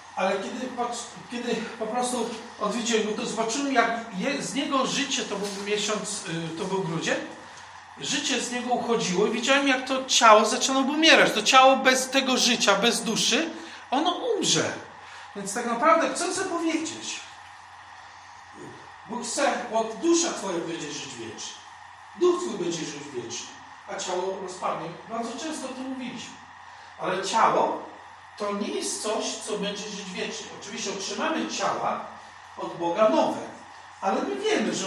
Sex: male